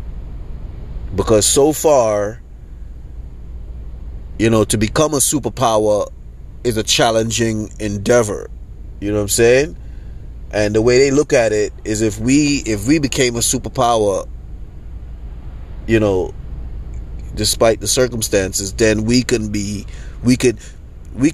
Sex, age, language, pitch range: male, 30-49, English, 75-120 Hz